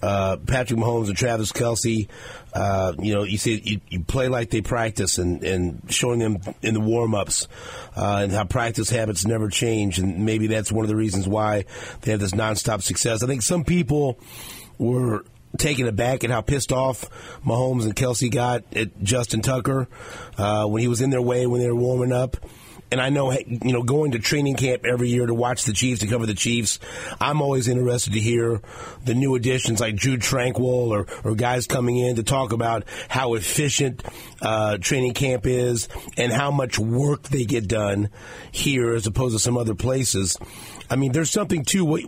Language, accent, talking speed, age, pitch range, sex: English, American, 200 wpm, 40-59, 110-130 Hz, male